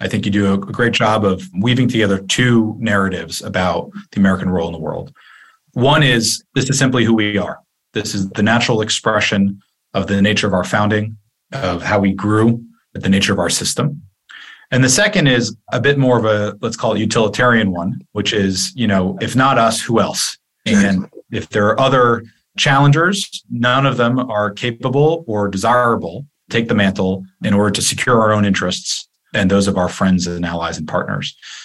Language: English